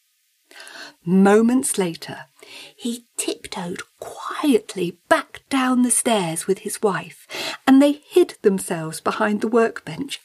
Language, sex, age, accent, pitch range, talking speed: English, female, 50-69, British, 195-300 Hz, 110 wpm